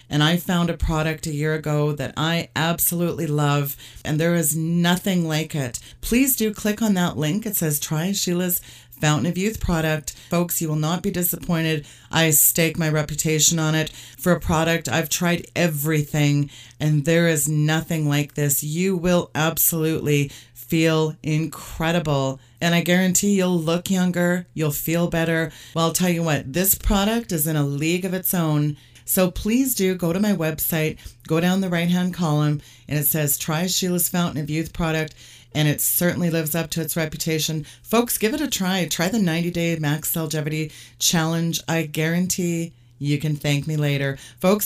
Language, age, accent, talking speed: English, 40-59, American, 180 wpm